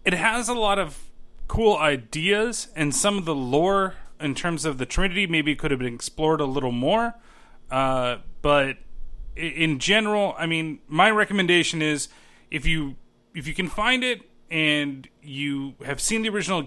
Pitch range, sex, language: 135-175 Hz, male, English